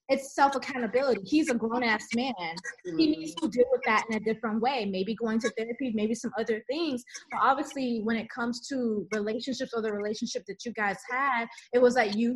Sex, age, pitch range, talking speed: female, 20-39, 220-275 Hz, 205 wpm